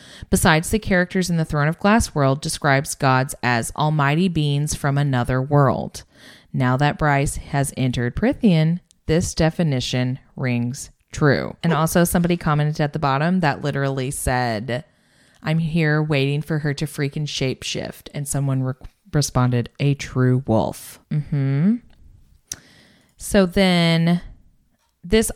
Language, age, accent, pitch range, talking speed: English, 20-39, American, 135-175 Hz, 135 wpm